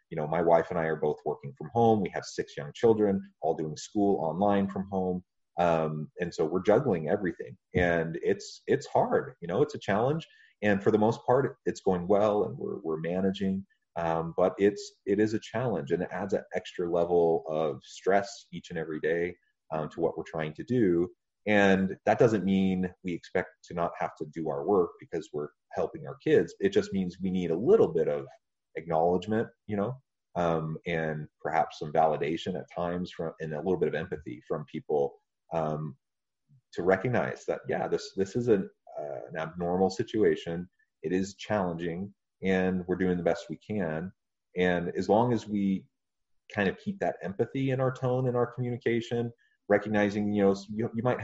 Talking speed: 195 wpm